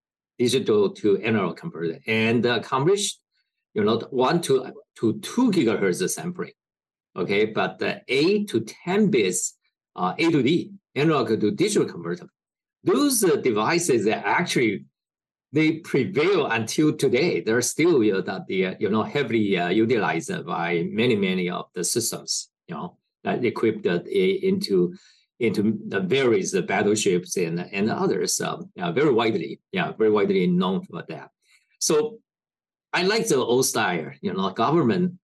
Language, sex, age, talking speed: English, male, 50-69, 150 wpm